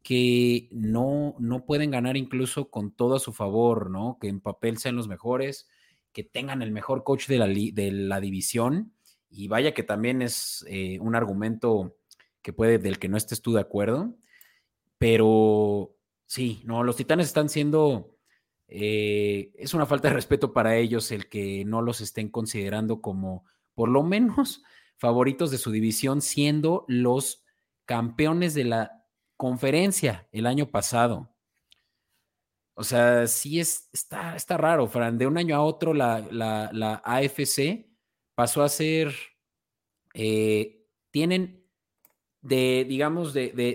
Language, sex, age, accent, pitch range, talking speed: Spanish, male, 30-49, Mexican, 105-140 Hz, 150 wpm